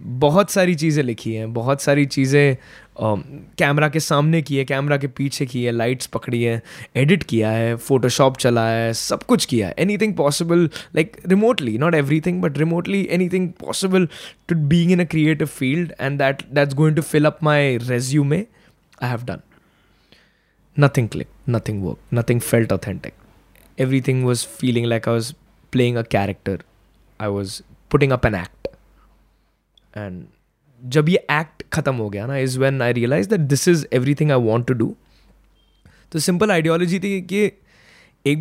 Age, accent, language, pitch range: 20-39, native, Hindi, 120-170 Hz